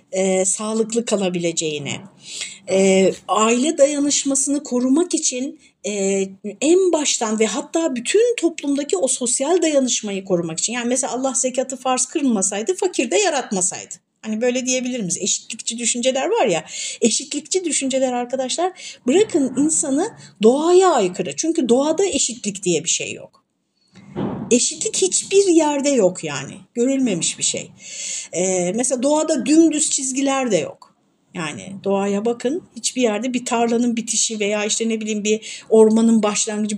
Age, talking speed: 60-79, 130 wpm